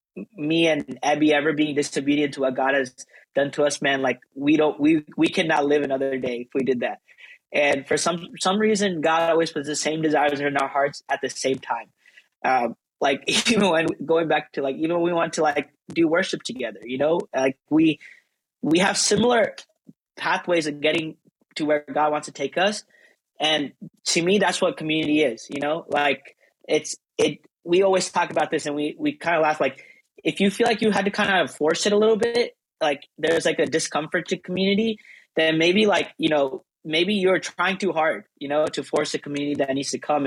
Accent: American